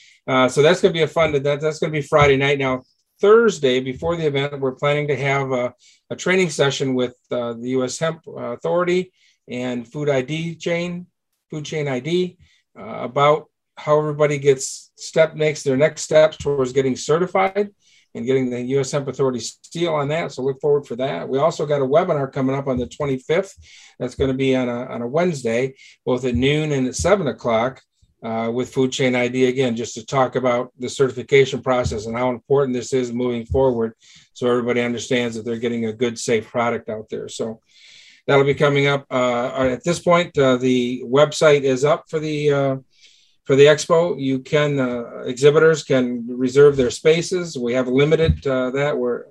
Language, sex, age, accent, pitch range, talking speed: English, male, 50-69, American, 125-150 Hz, 195 wpm